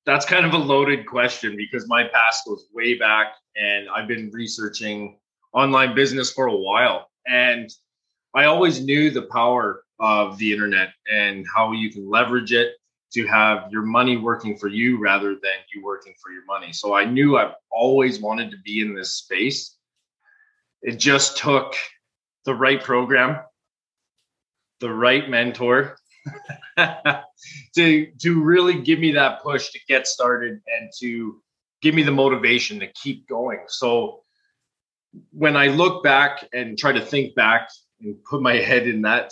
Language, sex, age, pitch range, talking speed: English, male, 20-39, 110-140 Hz, 160 wpm